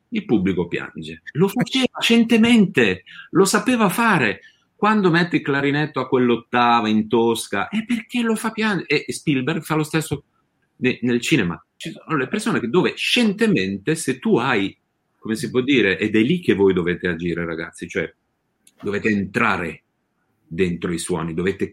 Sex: male